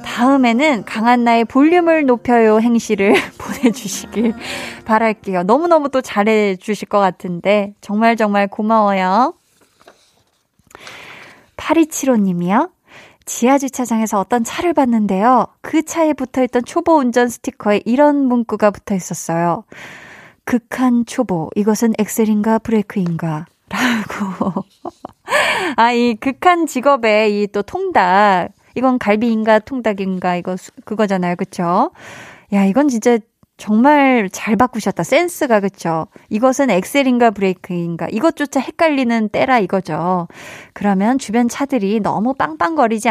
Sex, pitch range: female, 195-255 Hz